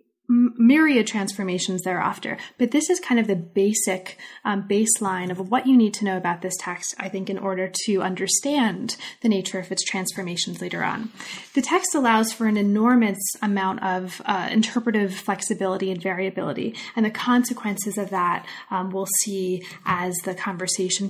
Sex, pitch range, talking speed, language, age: female, 195-245 Hz, 165 wpm, English, 20-39